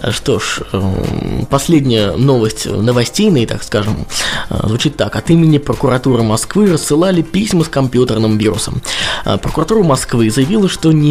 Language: Russian